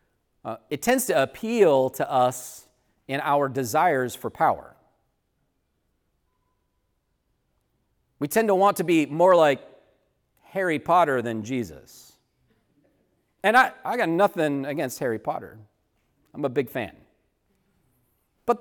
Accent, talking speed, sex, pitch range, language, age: American, 120 wpm, male, 110-150 Hz, English, 40-59